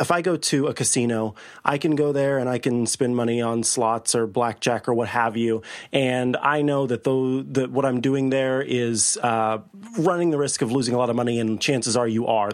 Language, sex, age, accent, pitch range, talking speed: English, male, 30-49, American, 120-155 Hz, 225 wpm